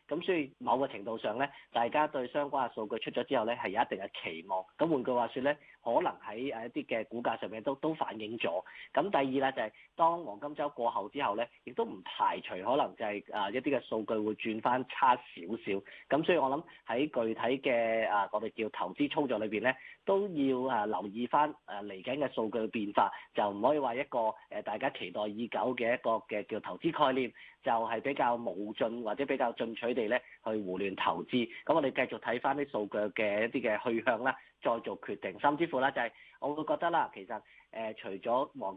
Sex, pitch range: male, 110-140 Hz